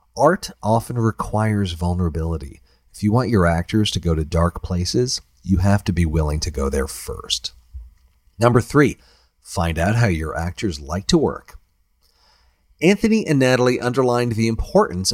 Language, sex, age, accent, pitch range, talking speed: English, male, 40-59, American, 85-125 Hz, 155 wpm